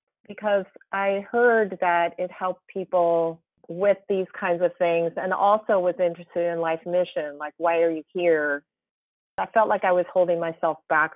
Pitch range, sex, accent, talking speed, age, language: 160-195 Hz, female, American, 170 wpm, 40-59, English